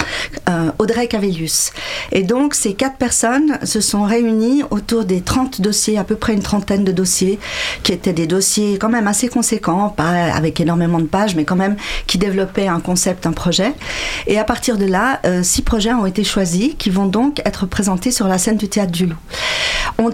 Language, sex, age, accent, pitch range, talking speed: French, female, 40-59, French, 180-230 Hz, 195 wpm